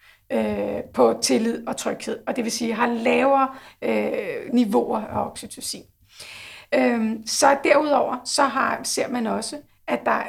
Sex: female